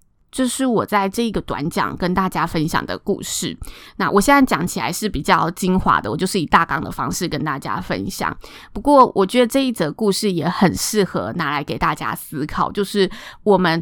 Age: 20-39